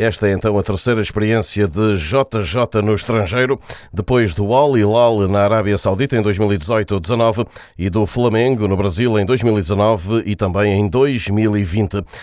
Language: Portuguese